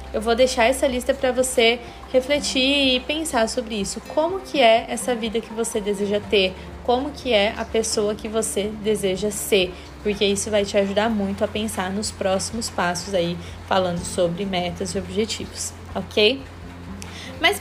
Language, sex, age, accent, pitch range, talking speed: Portuguese, female, 20-39, Brazilian, 200-280 Hz, 165 wpm